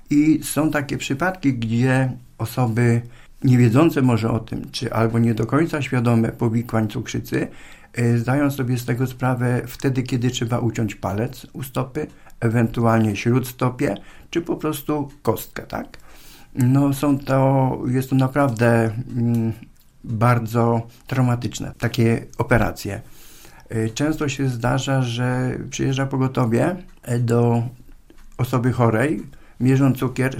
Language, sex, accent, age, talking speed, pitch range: Polish, male, native, 50-69, 120 wpm, 115-130 Hz